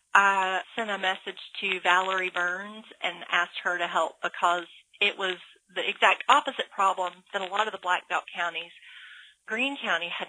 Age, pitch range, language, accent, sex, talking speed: 40-59, 175-215 Hz, English, American, female, 175 wpm